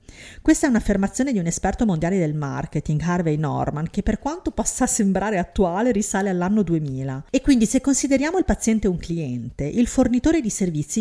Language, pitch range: Italian, 155-220 Hz